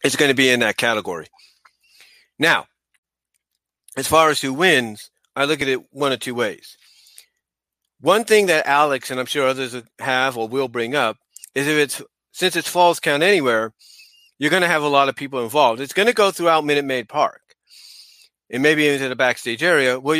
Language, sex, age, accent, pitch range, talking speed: English, male, 40-59, American, 125-155 Hz, 195 wpm